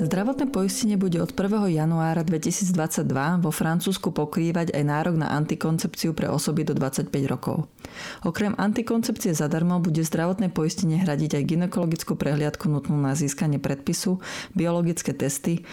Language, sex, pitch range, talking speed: Slovak, female, 155-185 Hz, 135 wpm